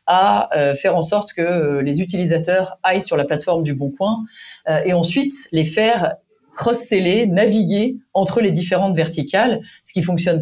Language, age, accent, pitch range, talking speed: French, 30-49, French, 155-205 Hz, 155 wpm